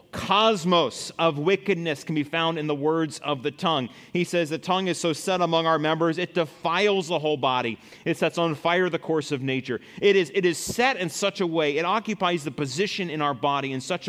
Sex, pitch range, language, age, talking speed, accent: male, 150-190 Hz, English, 30-49, 225 wpm, American